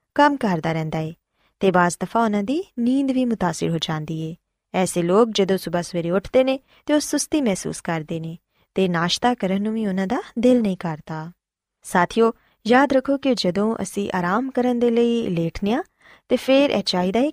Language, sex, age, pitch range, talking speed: Punjabi, female, 20-39, 175-255 Hz, 175 wpm